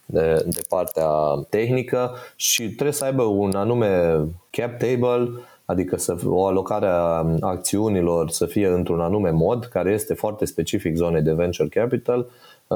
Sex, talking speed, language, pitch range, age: male, 140 wpm, Romanian, 90-115 Hz, 20-39